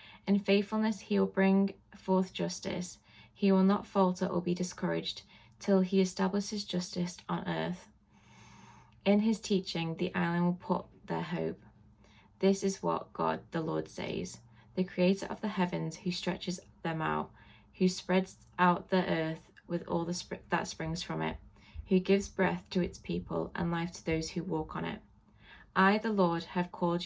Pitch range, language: 165-190 Hz, English